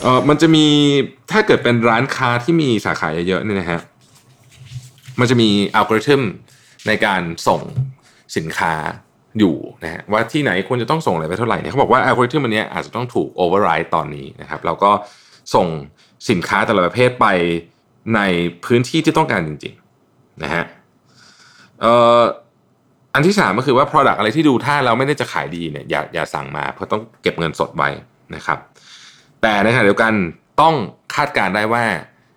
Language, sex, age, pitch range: Thai, male, 20-39, 90-130 Hz